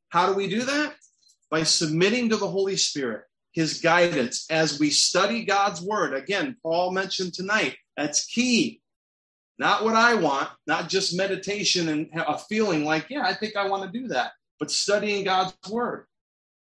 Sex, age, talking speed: male, 30-49, 170 wpm